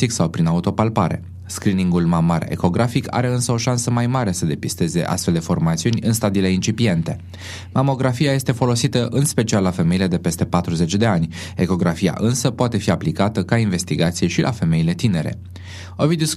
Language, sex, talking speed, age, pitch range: Romanian, male, 160 wpm, 20-39, 90-120 Hz